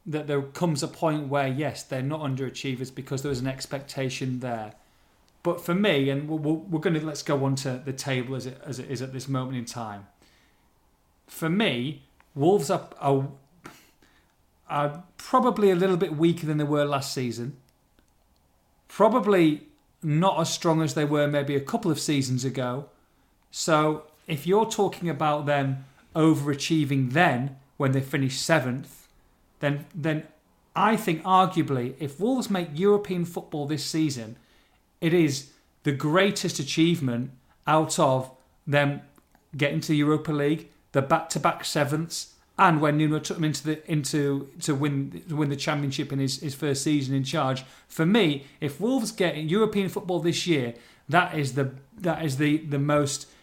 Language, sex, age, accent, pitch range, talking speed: English, male, 40-59, British, 135-165 Hz, 165 wpm